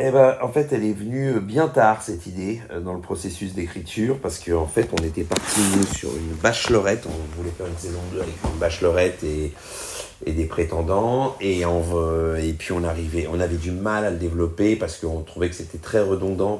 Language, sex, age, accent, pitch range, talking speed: French, male, 40-59, French, 85-110 Hz, 190 wpm